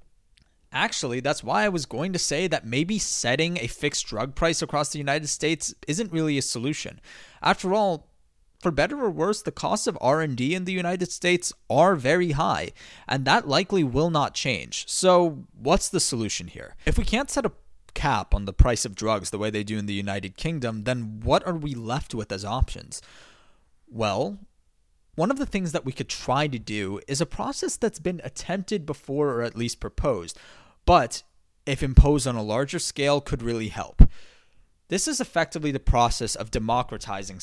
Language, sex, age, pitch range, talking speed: English, male, 20-39, 115-175 Hz, 190 wpm